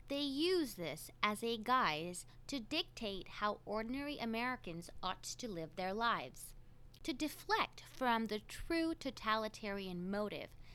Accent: American